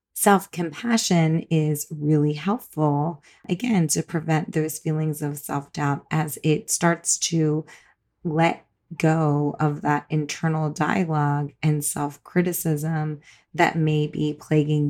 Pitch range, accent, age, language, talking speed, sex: 150-170 Hz, American, 30-49, English, 110 wpm, female